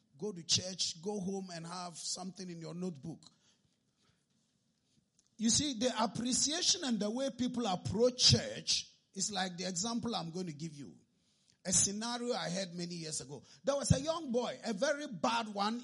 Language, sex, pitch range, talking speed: English, male, 180-250 Hz, 175 wpm